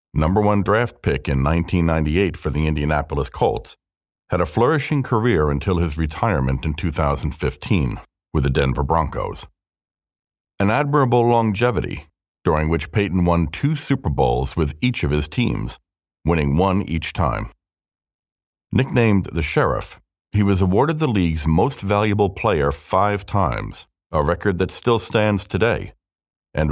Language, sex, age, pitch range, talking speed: English, male, 50-69, 75-100 Hz, 140 wpm